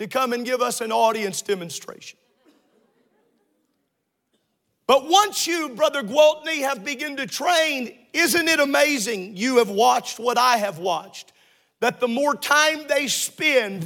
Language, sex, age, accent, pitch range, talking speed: English, male, 50-69, American, 235-305 Hz, 145 wpm